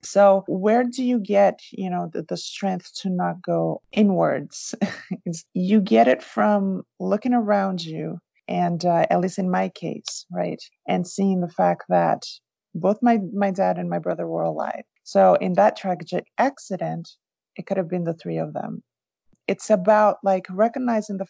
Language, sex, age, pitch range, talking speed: English, female, 30-49, 180-220 Hz, 170 wpm